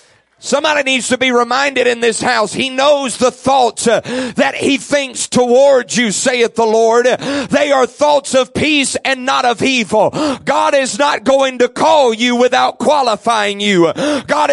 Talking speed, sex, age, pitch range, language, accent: 165 wpm, male, 40-59, 215-270 Hz, English, American